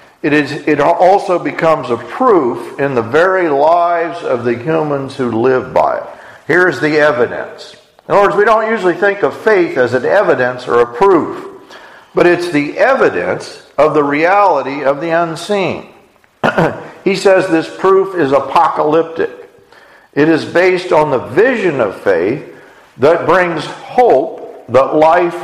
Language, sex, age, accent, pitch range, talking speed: English, male, 50-69, American, 150-210 Hz, 155 wpm